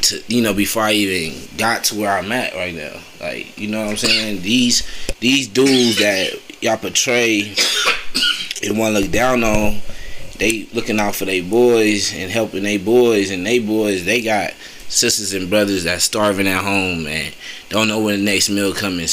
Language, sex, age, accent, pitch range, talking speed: English, male, 20-39, American, 100-115 Hz, 190 wpm